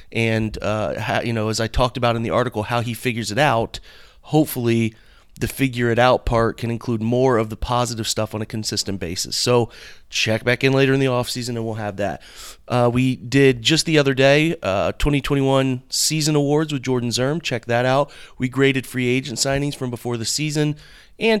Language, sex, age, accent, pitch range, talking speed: English, male, 30-49, American, 115-135 Hz, 205 wpm